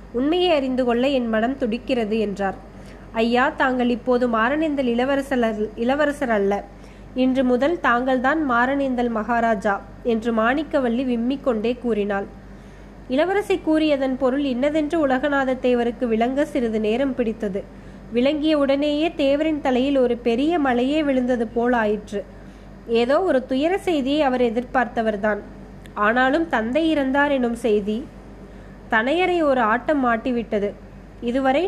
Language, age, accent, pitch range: Tamil, 20-39, native, 235-285 Hz